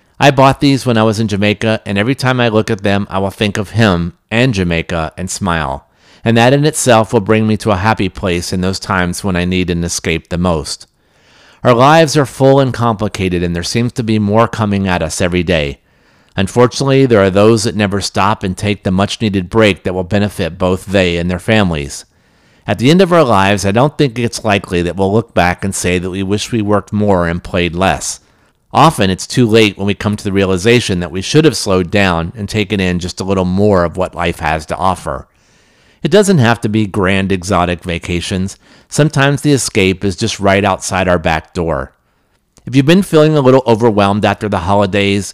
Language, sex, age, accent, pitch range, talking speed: English, male, 50-69, American, 90-115 Hz, 220 wpm